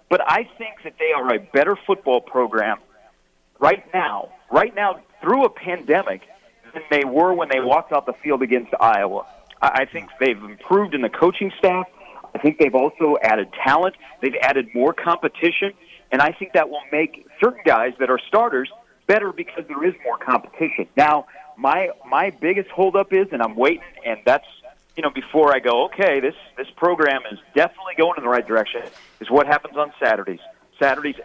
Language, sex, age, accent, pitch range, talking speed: English, male, 40-59, American, 135-185 Hz, 185 wpm